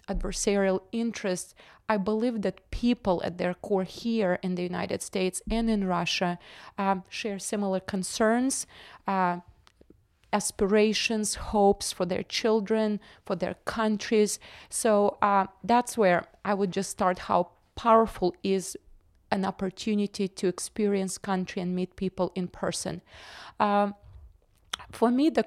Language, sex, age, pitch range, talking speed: English, female, 30-49, 185-210 Hz, 130 wpm